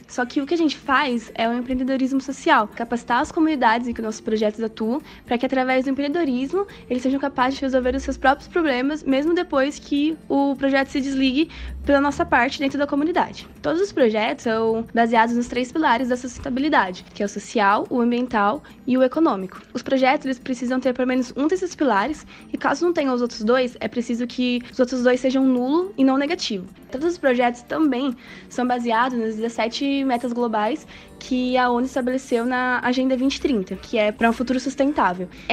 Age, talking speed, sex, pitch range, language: 10-29, 200 wpm, female, 235-285 Hz, Portuguese